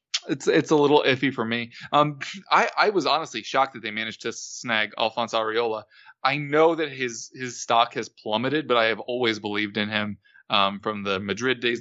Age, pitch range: 20-39, 110-140 Hz